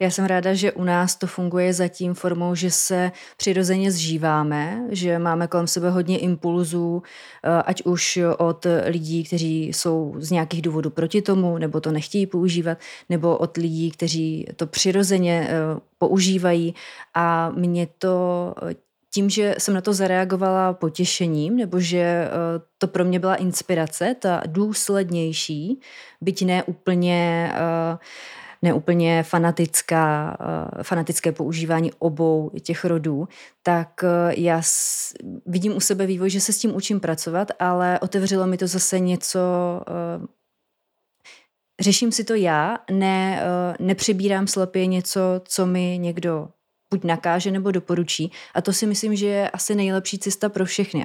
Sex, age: female, 30-49